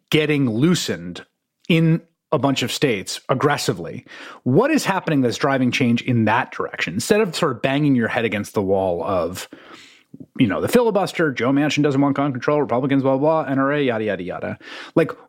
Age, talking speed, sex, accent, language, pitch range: 30-49, 185 wpm, male, American, English, 120-195 Hz